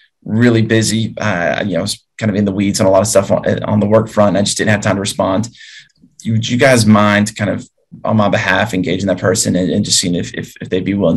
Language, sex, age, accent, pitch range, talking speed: English, male, 20-39, American, 100-110 Hz, 275 wpm